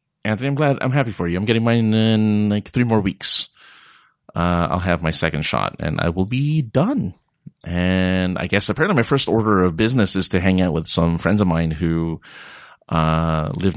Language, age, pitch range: English, 30-49, 90-120 Hz